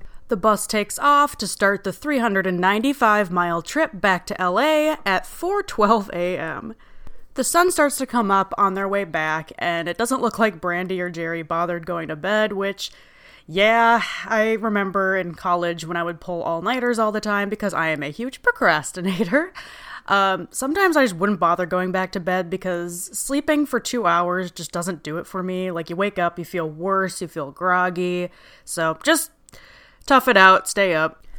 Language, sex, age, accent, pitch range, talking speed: English, female, 20-39, American, 180-230 Hz, 180 wpm